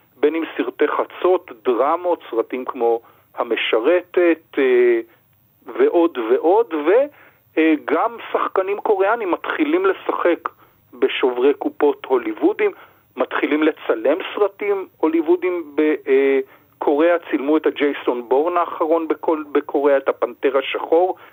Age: 40-59